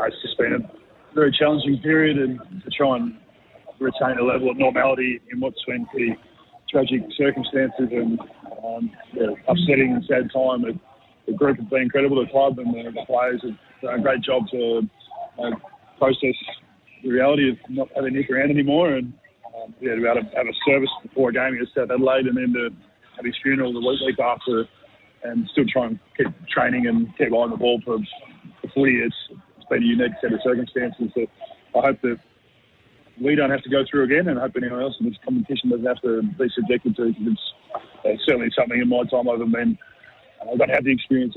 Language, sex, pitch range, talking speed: English, male, 125-145 Hz, 195 wpm